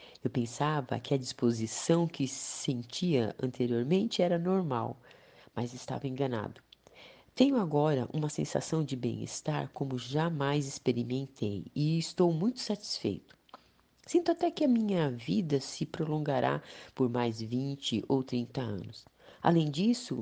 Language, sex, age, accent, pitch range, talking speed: Portuguese, female, 40-59, Brazilian, 125-190 Hz, 125 wpm